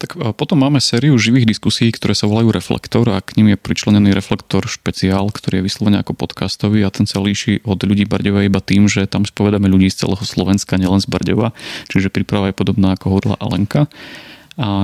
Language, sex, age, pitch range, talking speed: Slovak, male, 30-49, 100-110 Hz, 200 wpm